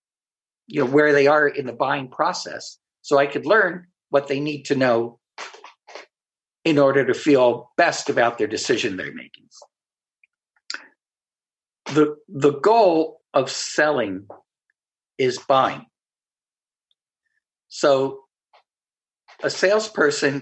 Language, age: English, 60-79